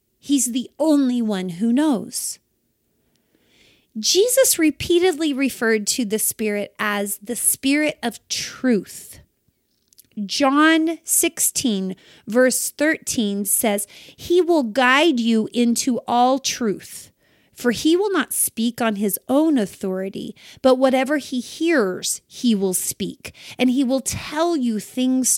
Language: English